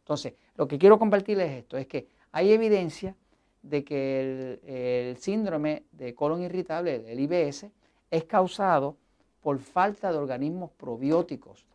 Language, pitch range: Spanish, 130-180 Hz